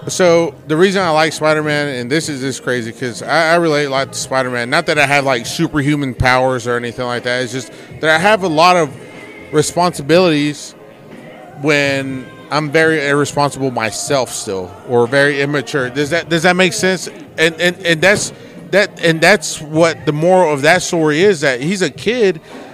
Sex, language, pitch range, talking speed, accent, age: male, English, 135-170 Hz, 195 wpm, American, 30-49